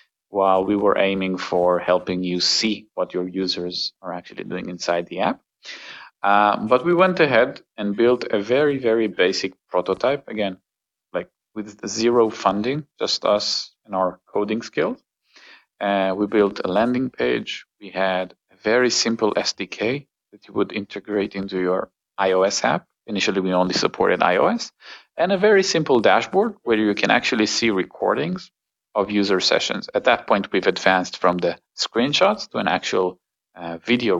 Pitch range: 95-110 Hz